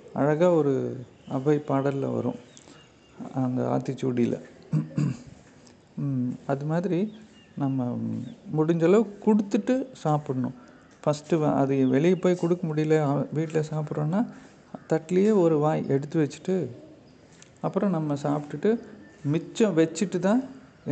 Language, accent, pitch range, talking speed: Tamil, native, 145-175 Hz, 90 wpm